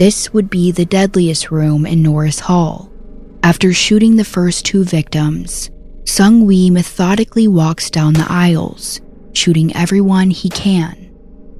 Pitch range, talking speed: 160-200 Hz, 130 wpm